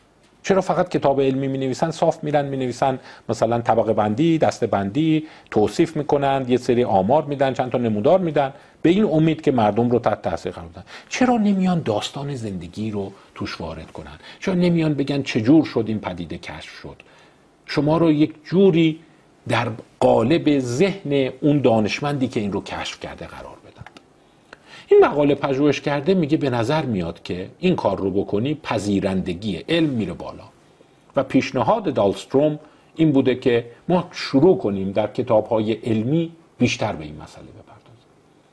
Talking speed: 160 wpm